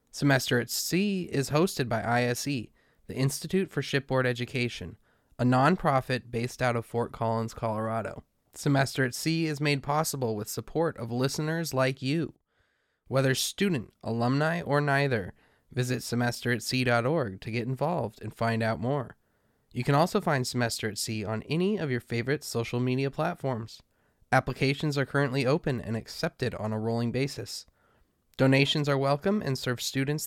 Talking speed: 155 wpm